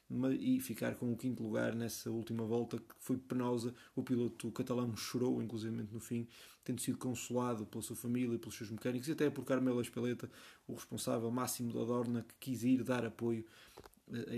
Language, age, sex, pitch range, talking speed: Portuguese, 20-39, male, 115-130 Hz, 190 wpm